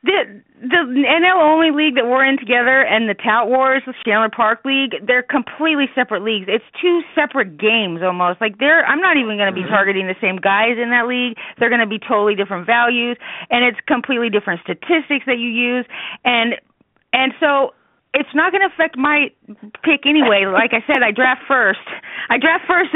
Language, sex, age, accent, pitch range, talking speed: English, female, 30-49, American, 215-275 Hz, 200 wpm